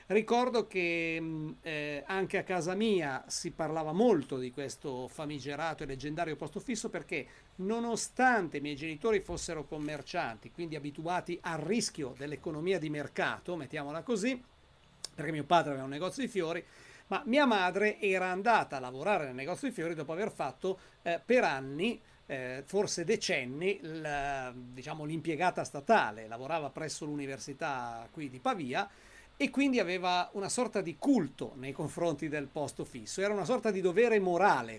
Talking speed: 155 wpm